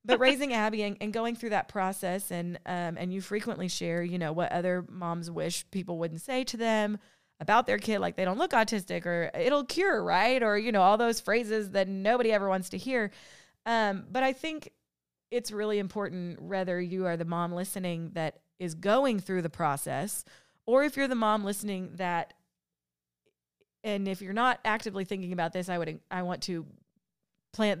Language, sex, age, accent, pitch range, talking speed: English, female, 30-49, American, 175-215 Hz, 195 wpm